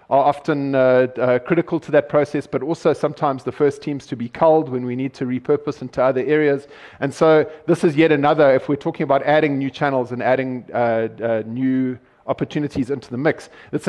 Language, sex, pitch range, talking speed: English, male, 125-145 Hz, 205 wpm